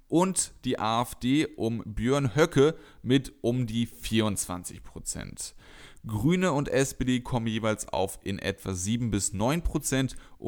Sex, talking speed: male, 110 wpm